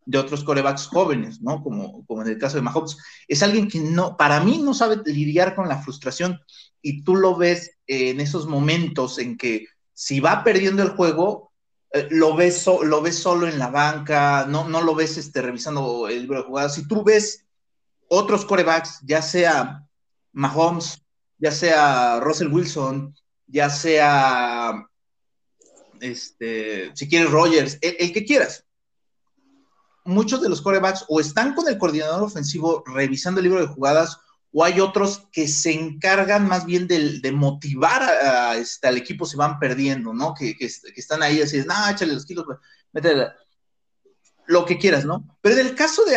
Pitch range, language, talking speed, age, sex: 140-185 Hz, Spanish, 175 wpm, 30-49, male